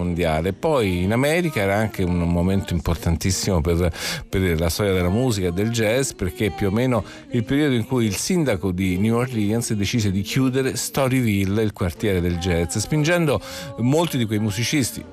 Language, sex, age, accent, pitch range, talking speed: Italian, male, 50-69, native, 90-120 Hz, 175 wpm